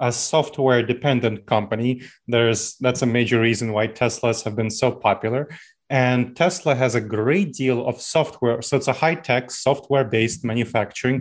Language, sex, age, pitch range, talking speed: English, male, 30-49, 120-140 Hz, 155 wpm